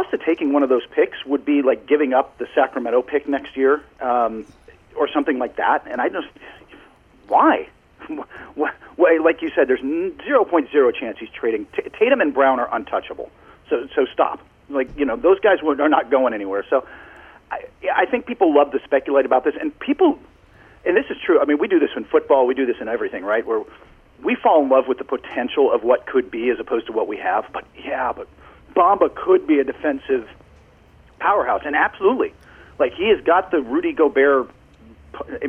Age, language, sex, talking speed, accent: 40-59, English, male, 210 wpm, American